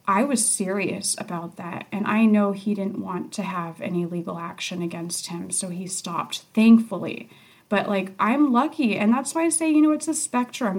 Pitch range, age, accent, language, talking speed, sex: 210-265 Hz, 30-49, American, English, 200 wpm, female